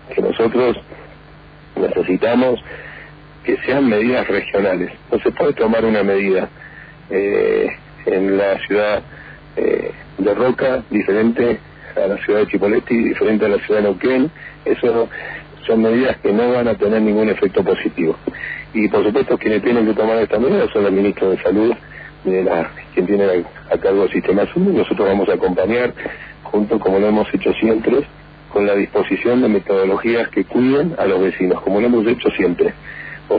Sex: male